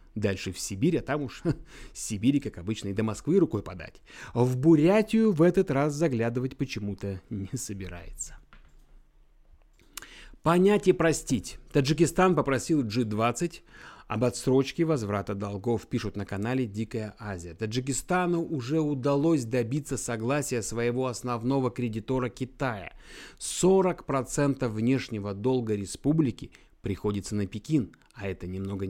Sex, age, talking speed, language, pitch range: male, 30-49, 125 wpm, Russian, 105-145 Hz